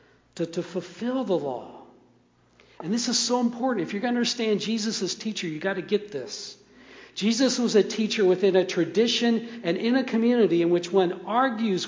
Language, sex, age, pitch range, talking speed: English, male, 60-79, 170-230 Hz, 190 wpm